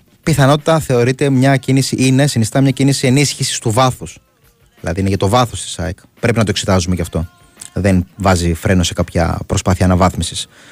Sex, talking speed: male, 175 wpm